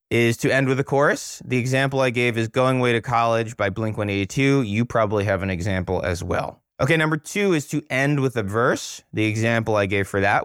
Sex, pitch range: male, 110-140 Hz